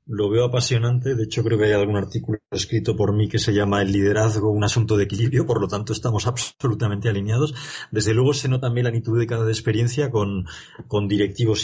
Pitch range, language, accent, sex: 105-125 Hz, Spanish, Spanish, male